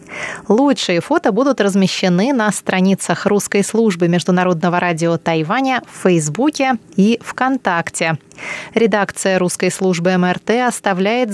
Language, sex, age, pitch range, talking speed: Russian, female, 20-39, 180-230 Hz, 105 wpm